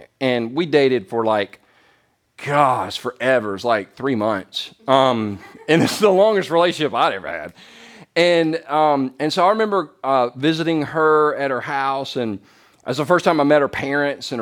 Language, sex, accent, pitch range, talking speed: English, male, American, 120-150 Hz, 175 wpm